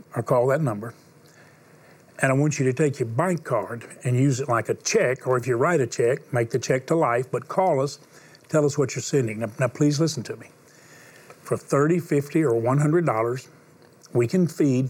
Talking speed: 210 wpm